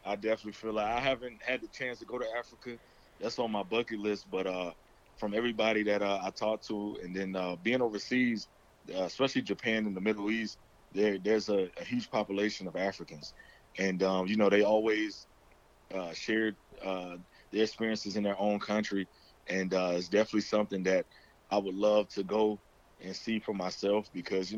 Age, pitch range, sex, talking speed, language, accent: 30-49, 95-115 Hz, male, 195 wpm, English, American